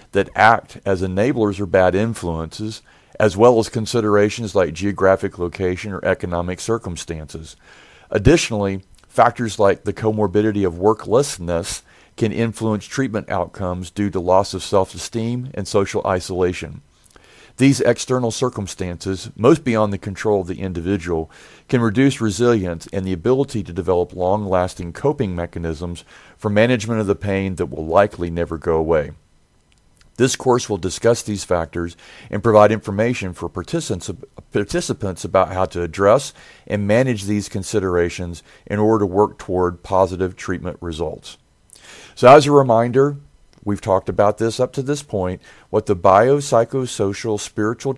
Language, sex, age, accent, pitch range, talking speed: English, male, 40-59, American, 90-115 Hz, 140 wpm